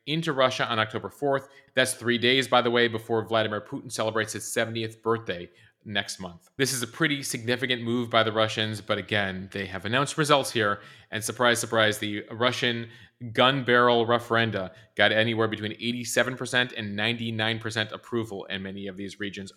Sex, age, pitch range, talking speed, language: male, 30-49, 110-130 Hz, 170 wpm, English